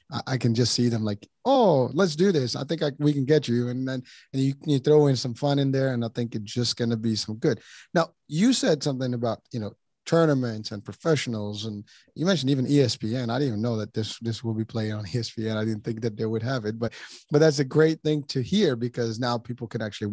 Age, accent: 30-49, American